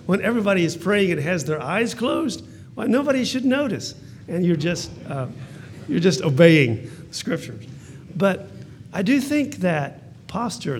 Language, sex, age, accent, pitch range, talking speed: English, male, 50-69, American, 130-180 Hz, 155 wpm